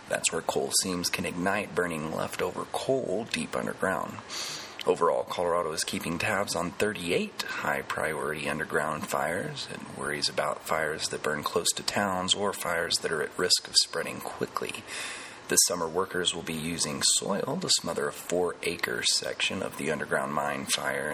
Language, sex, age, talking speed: English, male, 30-49, 160 wpm